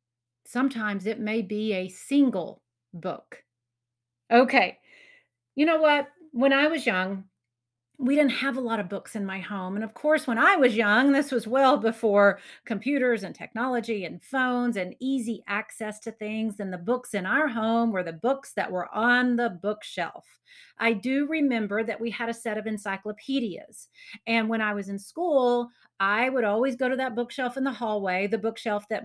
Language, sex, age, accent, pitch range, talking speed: English, female, 40-59, American, 205-255 Hz, 185 wpm